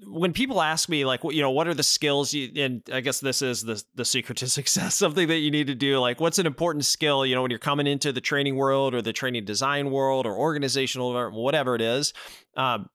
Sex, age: male, 30-49